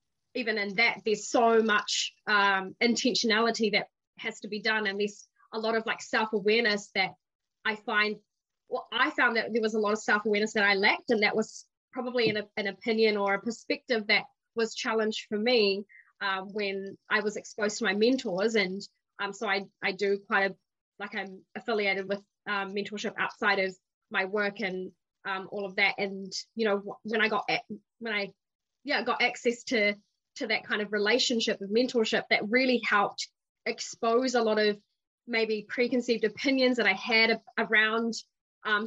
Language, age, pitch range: English, 20-39, 200-230 Hz